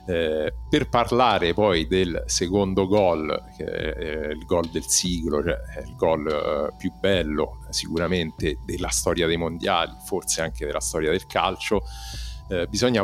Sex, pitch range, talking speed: male, 85-115 Hz, 135 wpm